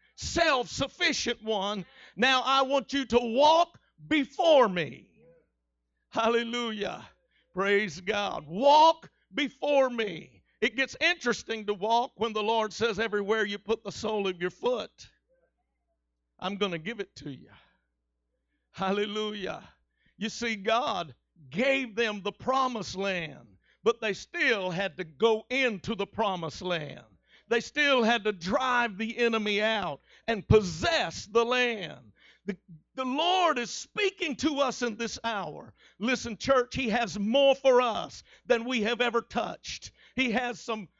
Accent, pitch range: American, 200-260 Hz